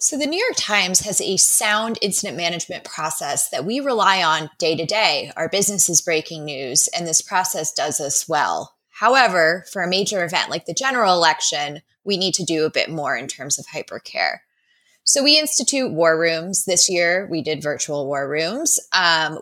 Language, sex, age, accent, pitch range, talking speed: English, female, 20-39, American, 160-225 Hz, 185 wpm